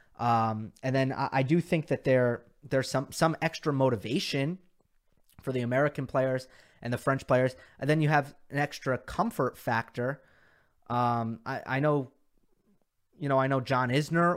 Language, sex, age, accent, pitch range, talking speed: English, male, 30-49, American, 120-160 Hz, 165 wpm